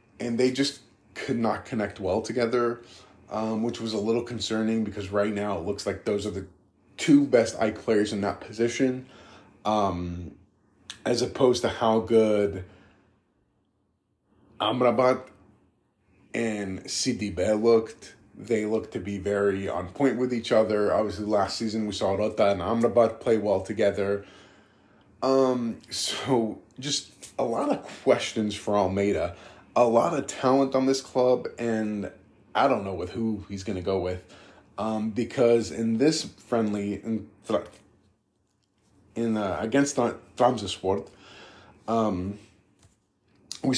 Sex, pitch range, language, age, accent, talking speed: male, 100-115 Hz, English, 20-39, American, 135 wpm